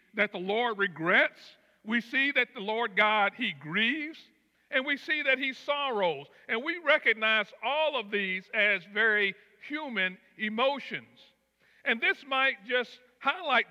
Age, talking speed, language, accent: 50-69, 145 wpm, English, American